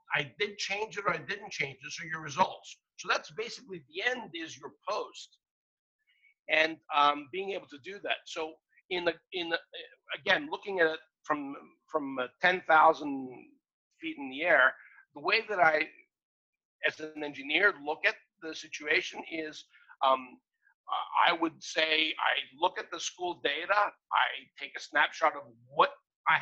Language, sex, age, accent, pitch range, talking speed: English, male, 50-69, American, 150-185 Hz, 165 wpm